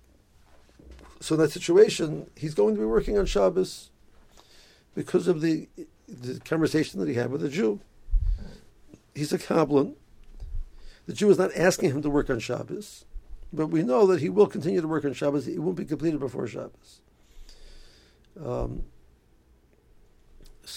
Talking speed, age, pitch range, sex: 155 wpm, 60-79, 130-185 Hz, male